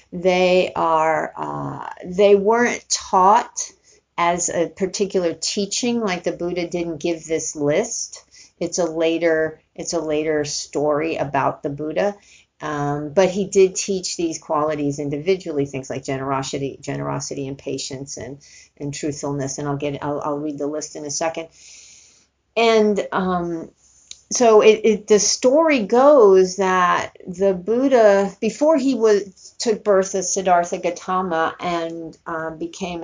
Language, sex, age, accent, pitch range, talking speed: English, female, 50-69, American, 150-195 Hz, 140 wpm